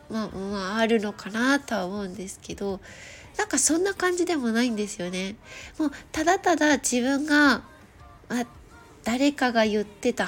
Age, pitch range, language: 20-39, 215-315 Hz, Japanese